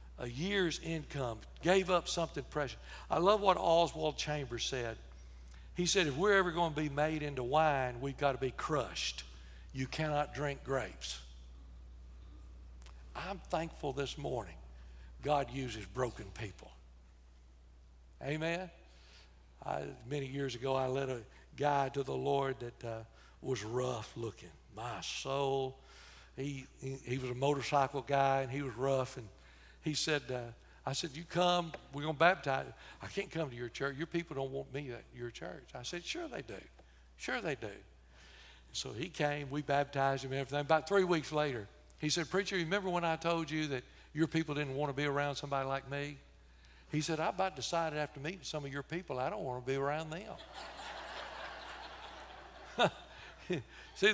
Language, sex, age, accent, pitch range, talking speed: English, male, 60-79, American, 110-155 Hz, 170 wpm